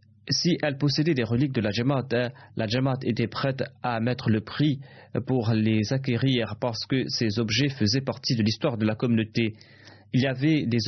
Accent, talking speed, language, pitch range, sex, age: French, 190 wpm, French, 110-135 Hz, male, 30-49